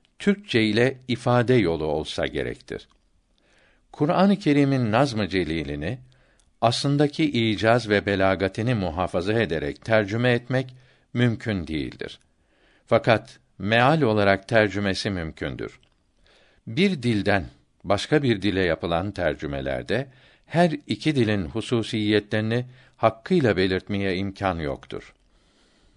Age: 60-79